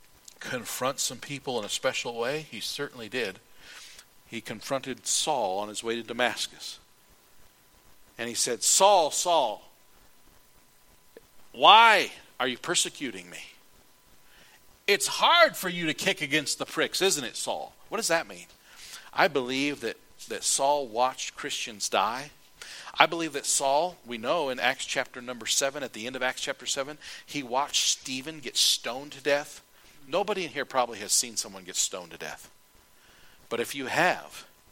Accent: American